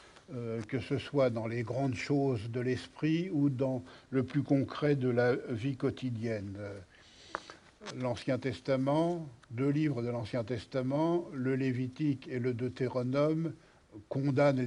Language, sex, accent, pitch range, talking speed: French, male, French, 125-145 Hz, 125 wpm